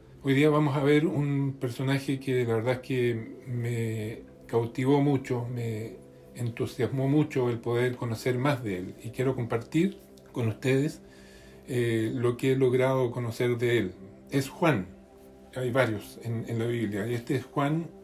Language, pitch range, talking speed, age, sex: Spanish, 110-135 Hz, 165 wpm, 40-59, male